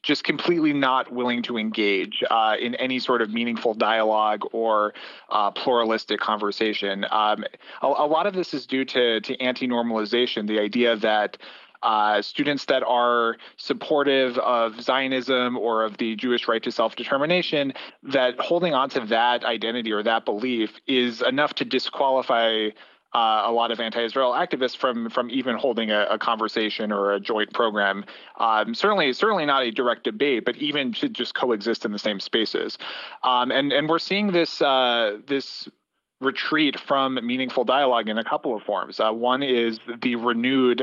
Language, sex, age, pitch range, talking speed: English, male, 30-49, 110-130 Hz, 165 wpm